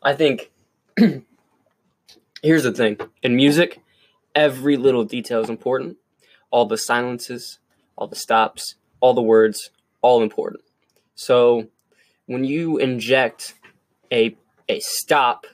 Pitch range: 110-130 Hz